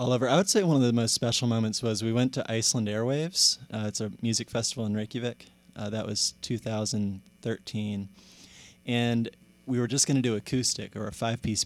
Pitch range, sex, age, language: 105-125 Hz, male, 20-39, English